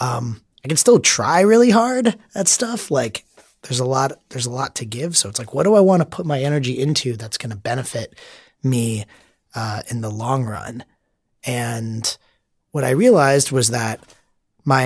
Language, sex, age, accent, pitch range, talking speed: English, male, 30-49, American, 110-135 Hz, 190 wpm